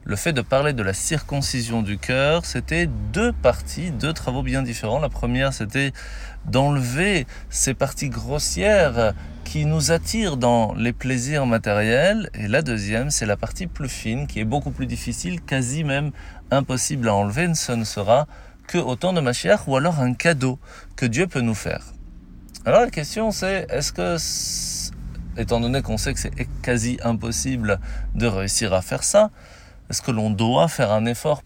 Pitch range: 105-145 Hz